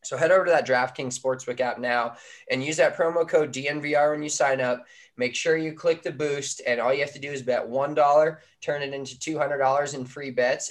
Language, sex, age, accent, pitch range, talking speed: English, male, 20-39, American, 120-140 Hz, 230 wpm